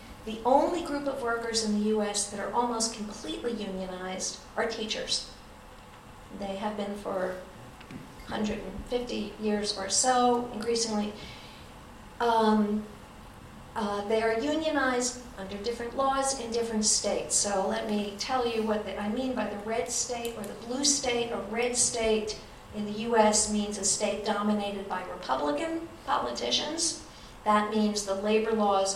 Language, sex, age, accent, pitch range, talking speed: Swedish, female, 50-69, American, 200-235 Hz, 145 wpm